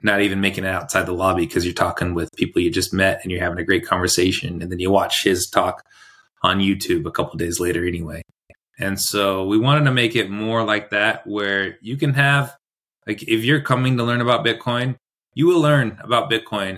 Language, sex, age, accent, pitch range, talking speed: English, male, 20-39, American, 95-115 Hz, 220 wpm